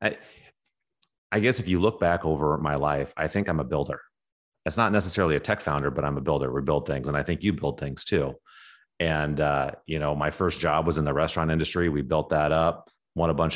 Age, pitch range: 30-49, 75-85 Hz